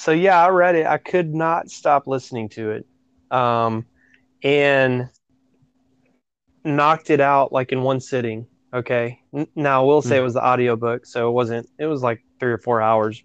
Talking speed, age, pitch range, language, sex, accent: 185 wpm, 20-39, 125-150 Hz, English, male, American